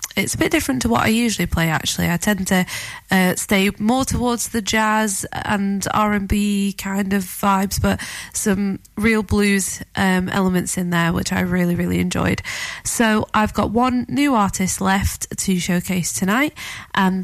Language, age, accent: English, 20-39, British